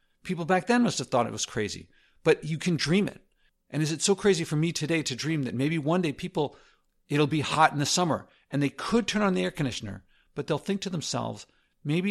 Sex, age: male, 50-69